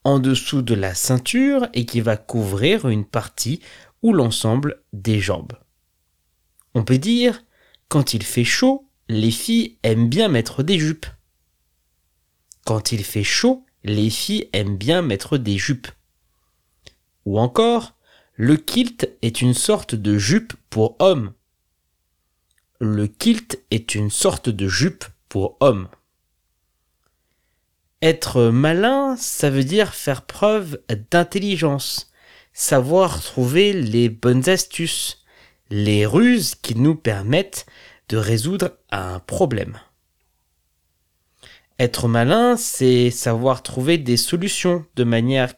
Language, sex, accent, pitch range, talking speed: French, male, French, 95-160 Hz, 120 wpm